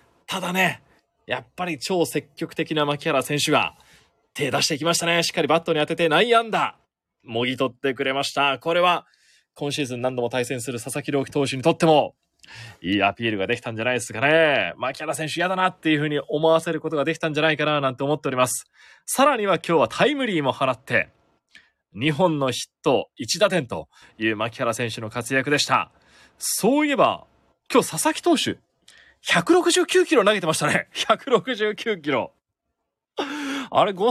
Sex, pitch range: male, 125-190 Hz